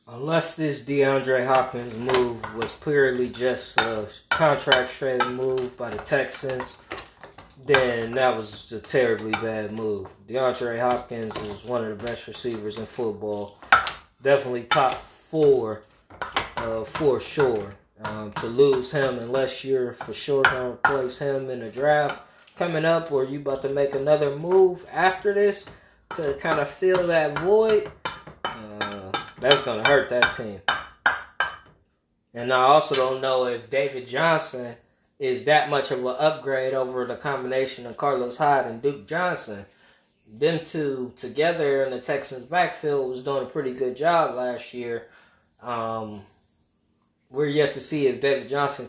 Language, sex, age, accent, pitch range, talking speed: English, male, 20-39, American, 120-145 Hz, 150 wpm